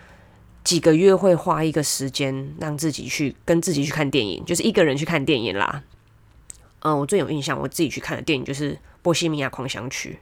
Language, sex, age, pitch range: Chinese, female, 20-39, 130-170 Hz